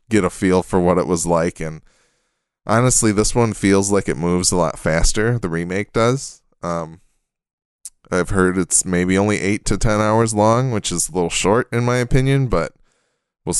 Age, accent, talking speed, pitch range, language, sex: 20-39, American, 190 wpm, 90-115 Hz, English, male